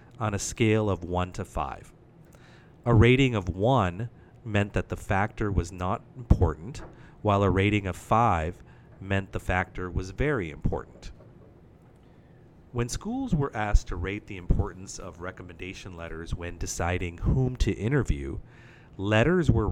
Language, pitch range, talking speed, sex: English, 90-120 Hz, 145 wpm, male